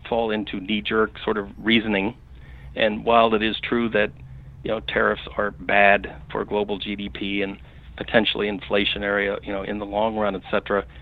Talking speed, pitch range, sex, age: 165 wpm, 75-105 Hz, male, 40-59